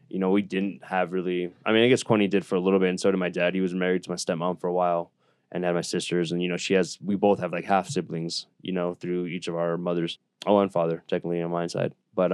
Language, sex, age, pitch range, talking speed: English, male, 20-39, 90-95 Hz, 290 wpm